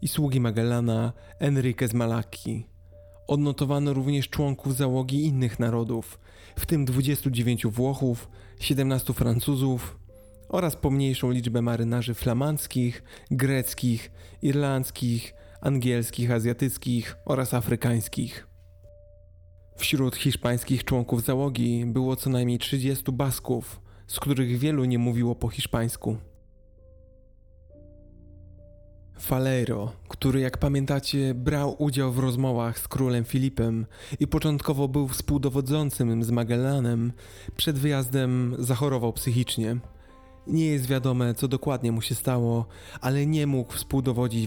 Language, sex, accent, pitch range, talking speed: Polish, male, native, 110-135 Hz, 105 wpm